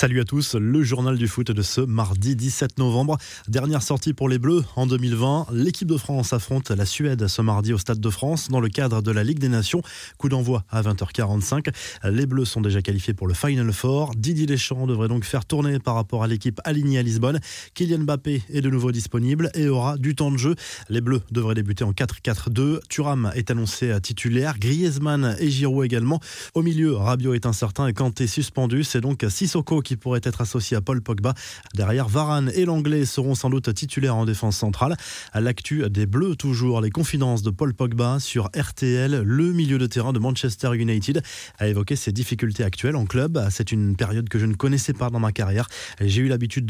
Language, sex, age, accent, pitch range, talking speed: French, male, 20-39, French, 115-140 Hz, 205 wpm